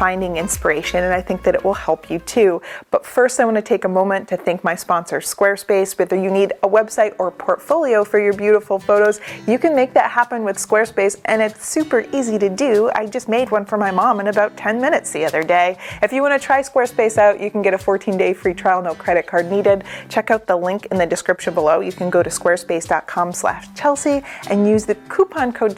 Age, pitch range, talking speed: 30-49, 190-240 Hz, 235 wpm